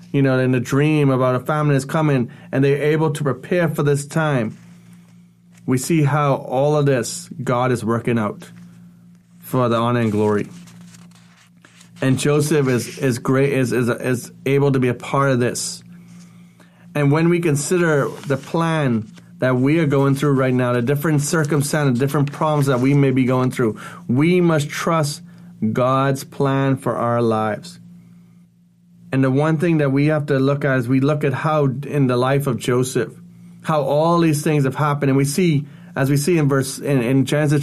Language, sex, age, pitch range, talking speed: English, male, 30-49, 135-170 Hz, 185 wpm